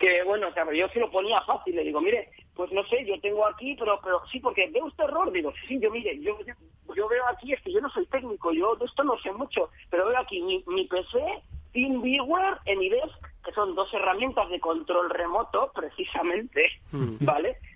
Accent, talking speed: Spanish, 215 wpm